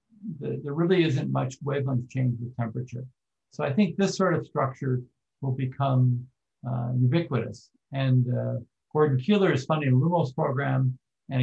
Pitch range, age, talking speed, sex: 125-155 Hz, 50-69, 150 wpm, male